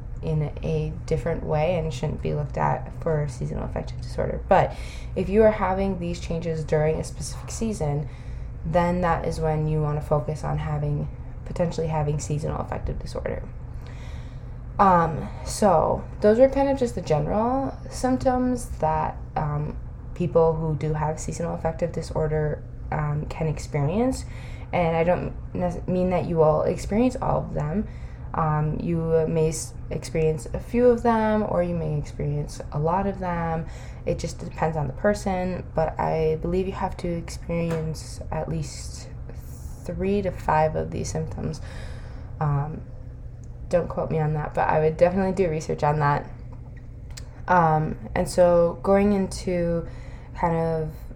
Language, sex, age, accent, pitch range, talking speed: English, female, 10-29, American, 150-180 Hz, 150 wpm